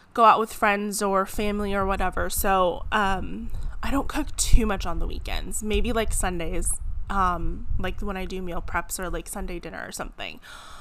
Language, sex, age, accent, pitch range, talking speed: English, female, 20-39, American, 195-245 Hz, 190 wpm